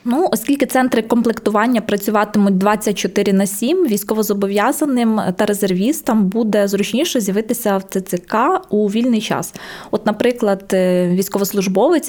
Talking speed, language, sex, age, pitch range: 110 wpm, Ukrainian, female, 20-39, 180-215 Hz